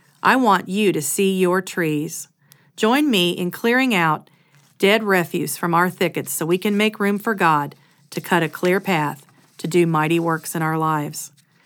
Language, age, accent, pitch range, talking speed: English, 40-59, American, 155-200 Hz, 185 wpm